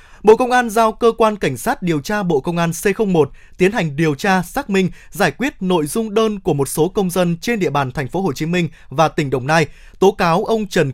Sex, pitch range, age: male, 160-210 Hz, 20-39